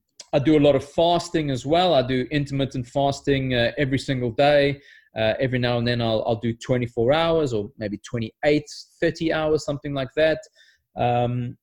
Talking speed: 180 wpm